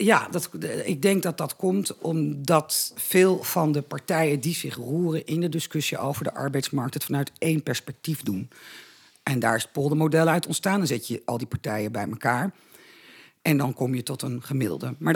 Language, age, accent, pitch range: Dutch, 50-69, Dutch, 135-175 Hz